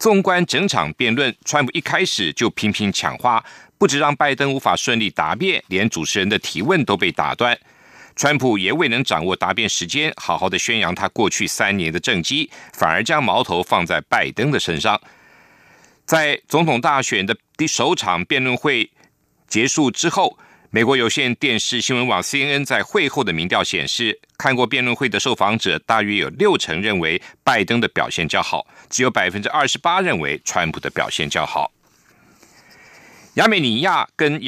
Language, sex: German, male